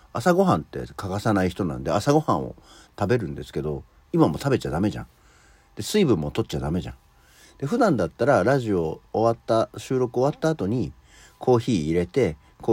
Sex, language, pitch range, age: male, Japanese, 80-135 Hz, 50-69